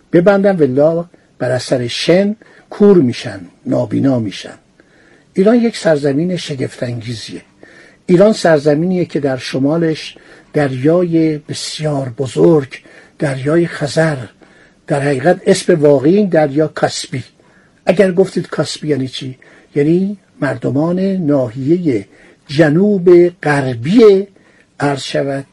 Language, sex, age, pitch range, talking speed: Persian, male, 60-79, 145-195 Hz, 95 wpm